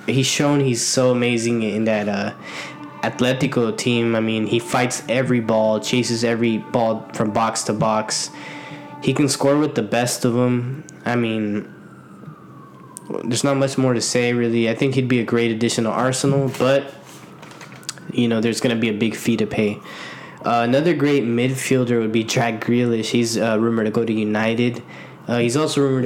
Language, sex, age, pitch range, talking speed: English, male, 10-29, 110-125 Hz, 185 wpm